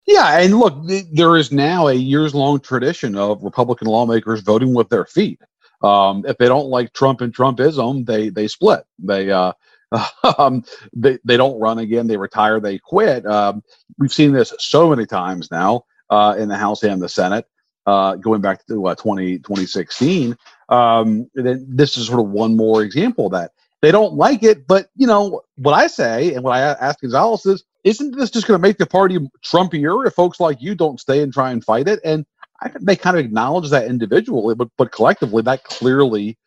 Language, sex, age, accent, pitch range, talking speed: English, male, 50-69, American, 110-155 Hz, 200 wpm